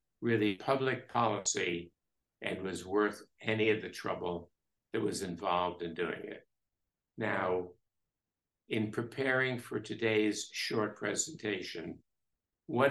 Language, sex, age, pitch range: English, male, 60-79, 90-115 Hz